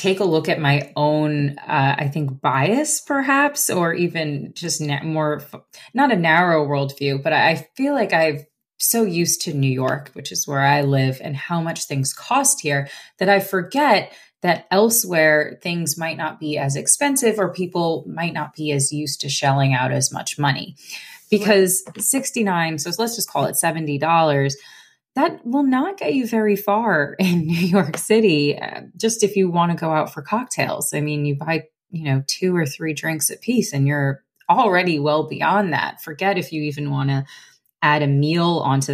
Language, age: English, 20-39